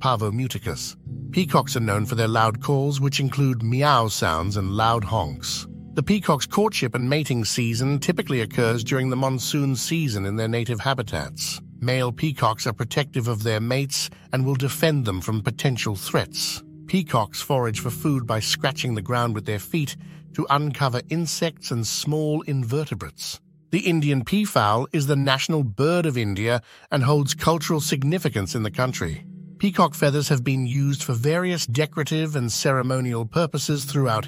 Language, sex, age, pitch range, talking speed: English, male, 50-69, 120-155 Hz, 160 wpm